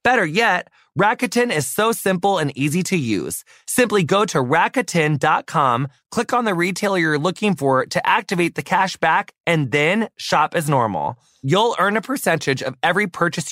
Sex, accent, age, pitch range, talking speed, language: male, American, 30-49, 130-180 Hz, 170 wpm, English